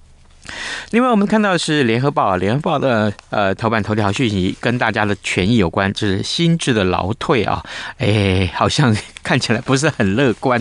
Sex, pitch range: male, 105-150 Hz